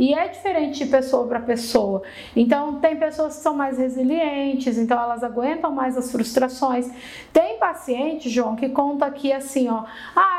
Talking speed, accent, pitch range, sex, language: 165 wpm, Brazilian, 240-315 Hz, female, Portuguese